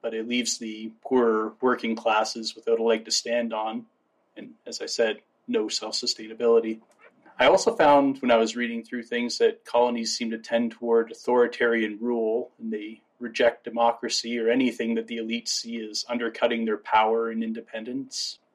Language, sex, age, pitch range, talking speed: English, male, 30-49, 115-130 Hz, 170 wpm